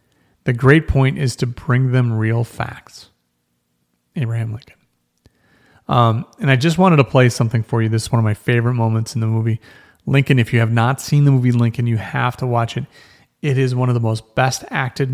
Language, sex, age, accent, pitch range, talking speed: English, male, 40-59, American, 115-135 Hz, 210 wpm